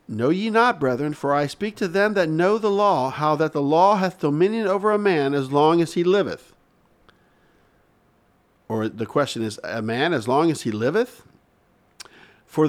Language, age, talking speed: English, 50-69, 185 wpm